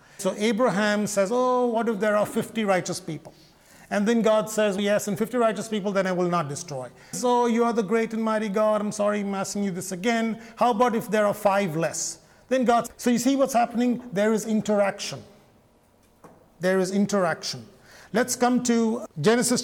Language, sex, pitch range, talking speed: English, male, 190-235 Hz, 200 wpm